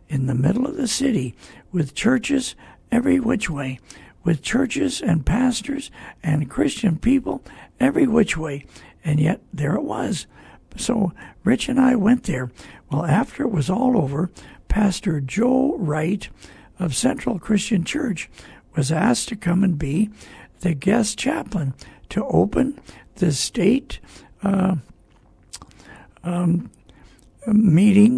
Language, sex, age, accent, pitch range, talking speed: English, male, 60-79, American, 160-235 Hz, 125 wpm